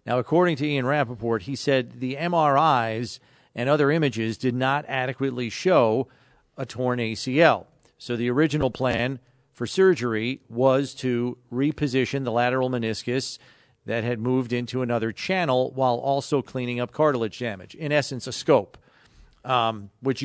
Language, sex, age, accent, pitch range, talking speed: English, male, 40-59, American, 120-145 Hz, 145 wpm